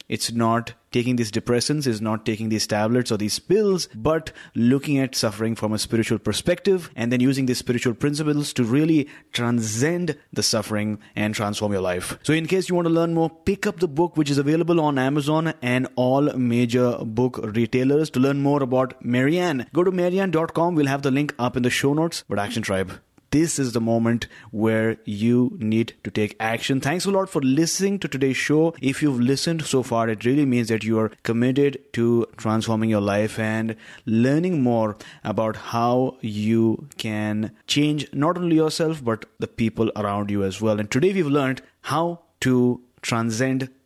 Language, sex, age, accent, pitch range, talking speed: English, male, 30-49, Indian, 110-150 Hz, 185 wpm